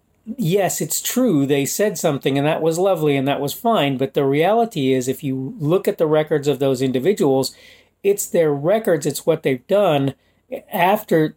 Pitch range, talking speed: 135-205 Hz, 185 wpm